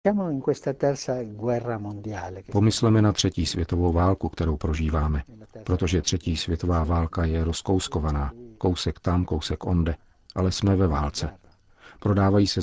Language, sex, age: Czech, male, 50-69